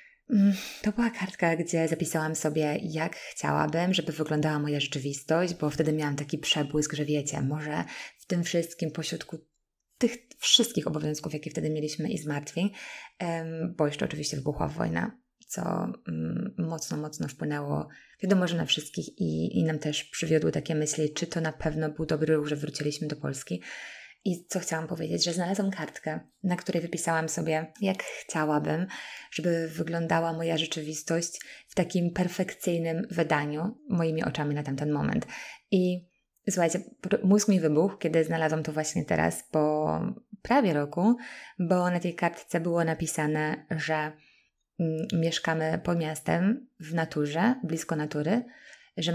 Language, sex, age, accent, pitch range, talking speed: Polish, female, 20-39, native, 155-180 Hz, 145 wpm